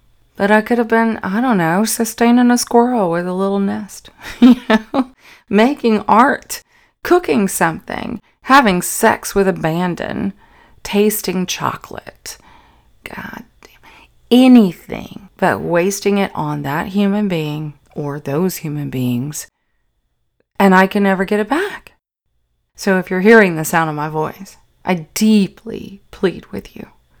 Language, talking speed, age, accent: English, 135 wpm, 30-49, American